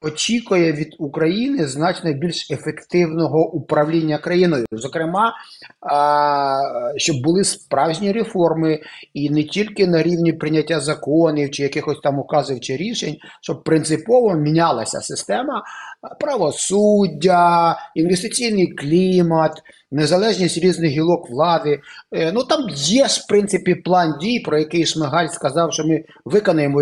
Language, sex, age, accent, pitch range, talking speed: Ukrainian, male, 30-49, native, 150-200 Hz, 115 wpm